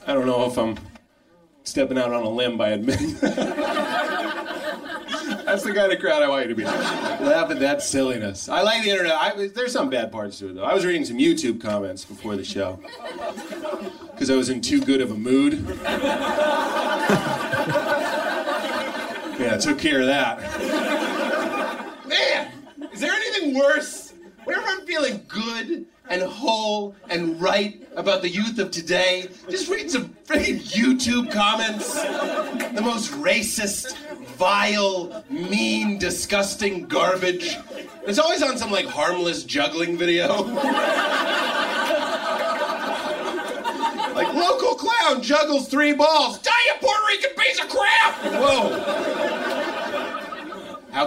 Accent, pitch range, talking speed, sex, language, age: American, 200-305 Hz, 135 wpm, male, Danish, 30-49